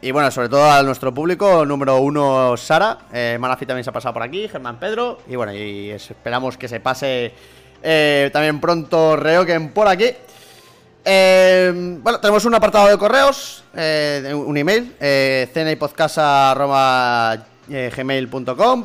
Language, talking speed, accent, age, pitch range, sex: Spanish, 145 wpm, Spanish, 30-49, 130-185 Hz, male